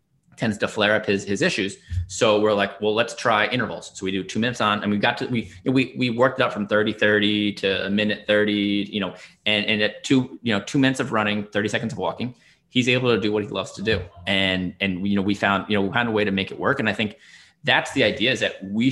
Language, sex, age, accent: English, male, 20-39, American